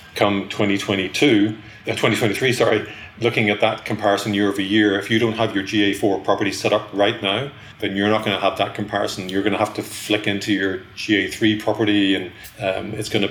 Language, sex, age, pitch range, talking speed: English, male, 30-49, 105-115 Hz, 195 wpm